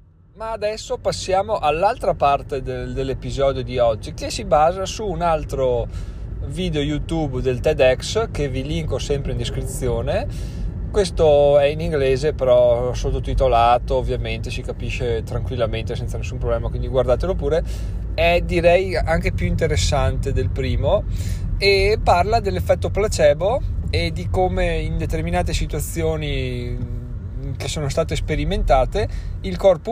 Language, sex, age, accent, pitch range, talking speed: Italian, male, 20-39, native, 100-145 Hz, 125 wpm